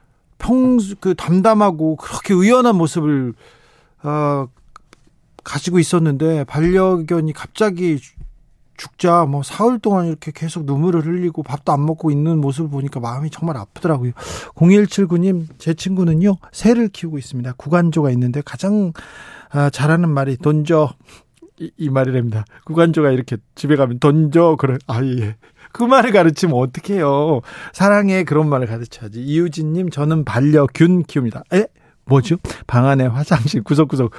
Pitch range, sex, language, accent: 140-185 Hz, male, Korean, native